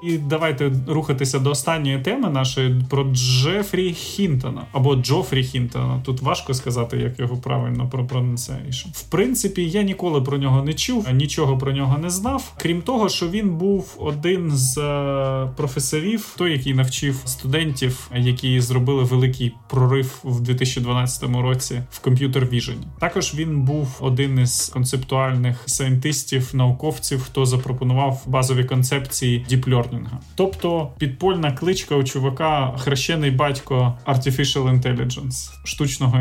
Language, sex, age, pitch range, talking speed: Ukrainian, male, 20-39, 130-155 Hz, 130 wpm